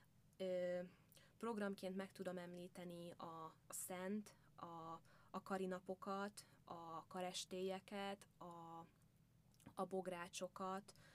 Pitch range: 160-185 Hz